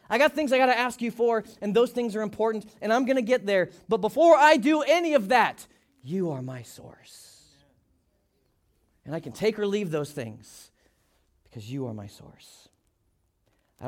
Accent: American